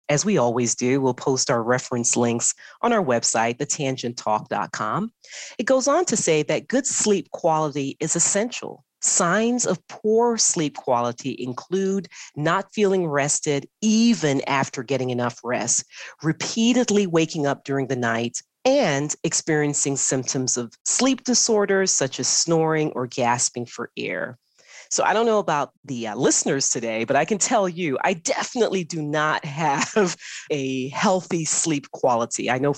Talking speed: 150 wpm